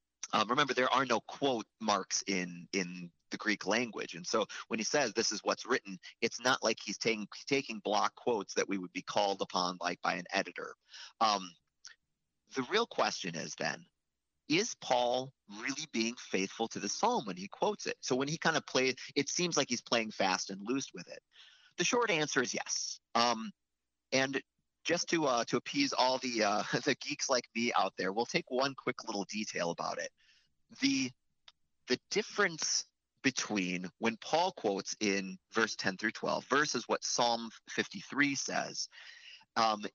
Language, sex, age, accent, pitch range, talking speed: English, male, 30-49, American, 95-135 Hz, 180 wpm